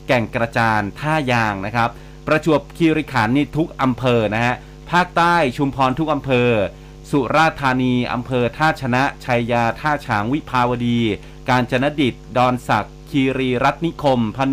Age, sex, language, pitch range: 30-49, male, Thai, 115-145 Hz